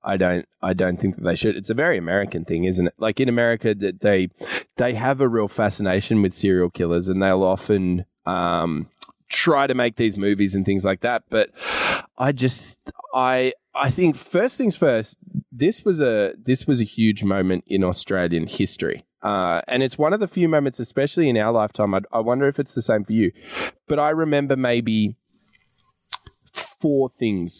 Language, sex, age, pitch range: English, male, 20-39, 95-130 Hz